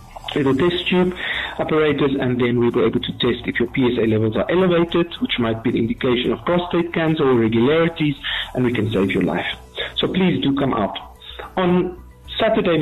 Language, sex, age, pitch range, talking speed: English, female, 50-69, 120-155 Hz, 190 wpm